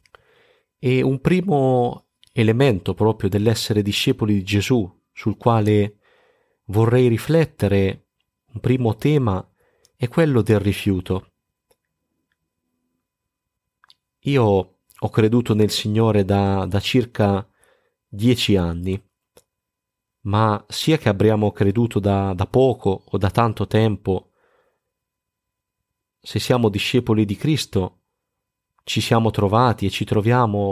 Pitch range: 100-120 Hz